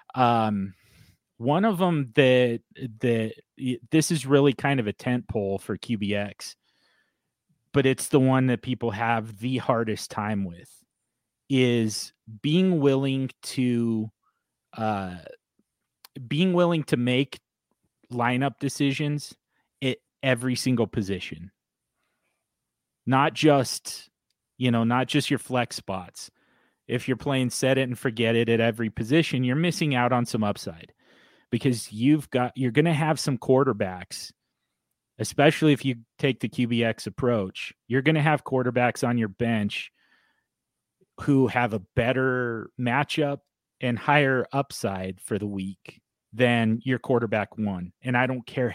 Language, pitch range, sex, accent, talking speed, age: English, 110-135 Hz, male, American, 140 wpm, 30-49